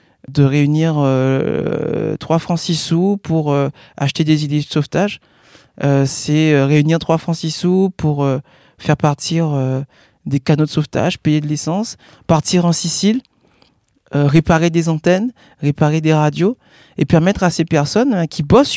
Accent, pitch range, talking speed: French, 150-175 Hz, 165 wpm